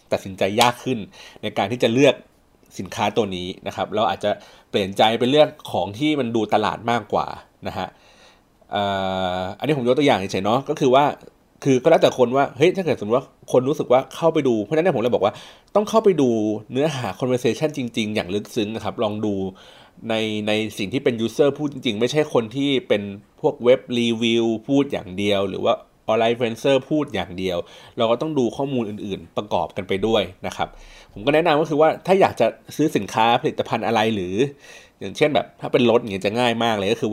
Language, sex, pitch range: Thai, male, 105-140 Hz